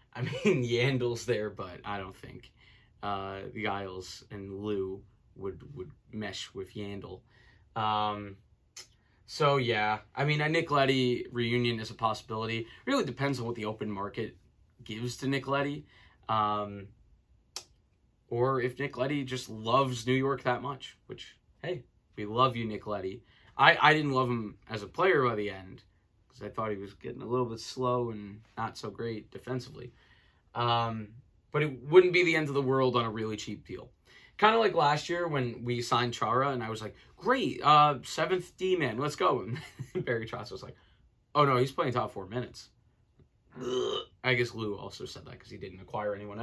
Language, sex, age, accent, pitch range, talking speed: English, male, 20-39, American, 105-130 Hz, 185 wpm